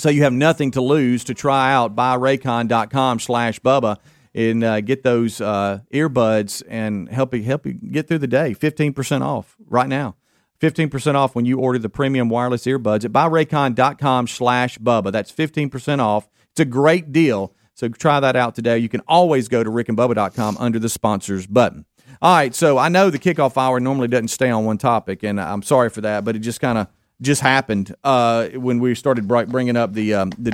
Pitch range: 110-130 Hz